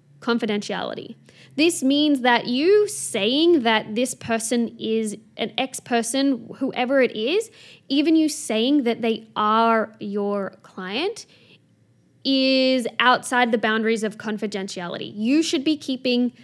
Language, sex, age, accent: English, female, 10-29, Australian